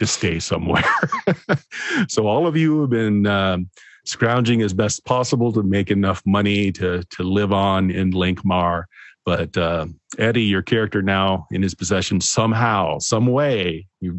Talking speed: 155 wpm